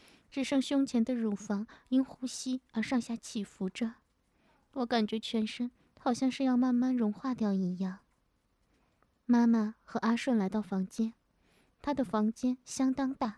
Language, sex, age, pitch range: Chinese, female, 20-39, 210-250 Hz